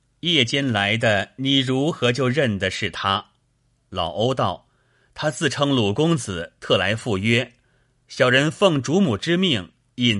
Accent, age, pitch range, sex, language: native, 30-49, 105-135 Hz, male, Chinese